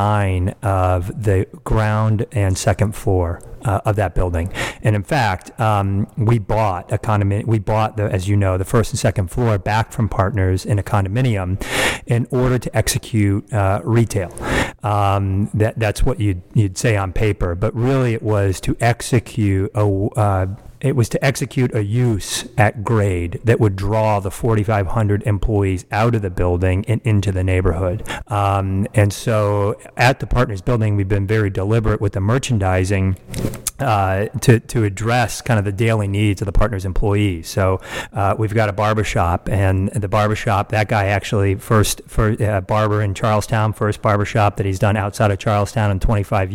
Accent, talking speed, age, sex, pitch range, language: American, 175 wpm, 40-59, male, 100-115 Hz, English